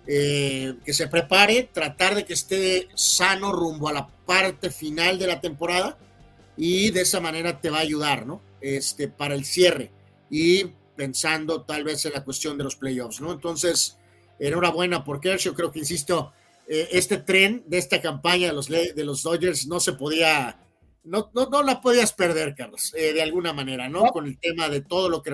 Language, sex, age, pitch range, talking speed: Spanish, male, 40-59, 145-180 Hz, 195 wpm